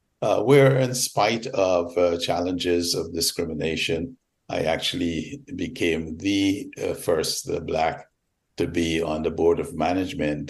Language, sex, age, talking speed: English, male, 60-79, 130 wpm